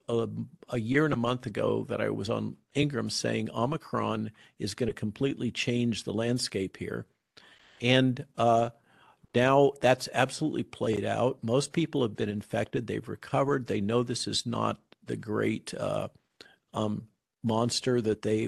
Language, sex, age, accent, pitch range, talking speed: English, male, 50-69, American, 110-135 Hz, 155 wpm